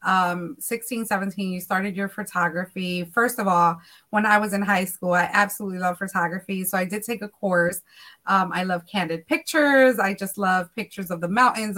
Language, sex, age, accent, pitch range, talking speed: English, female, 20-39, American, 190-230 Hz, 195 wpm